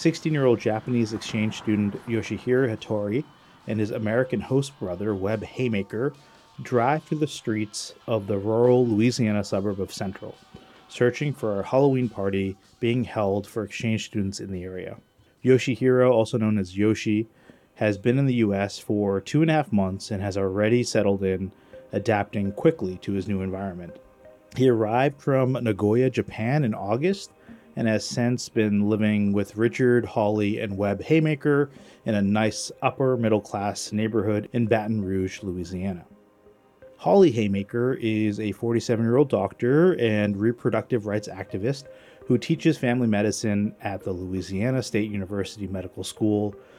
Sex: male